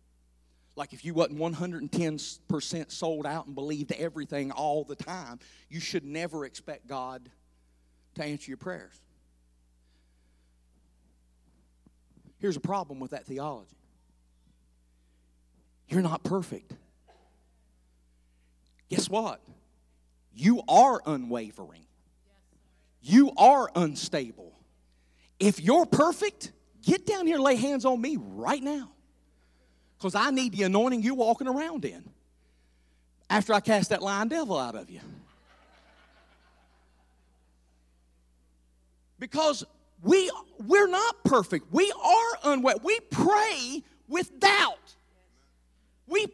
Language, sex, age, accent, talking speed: English, male, 40-59, American, 105 wpm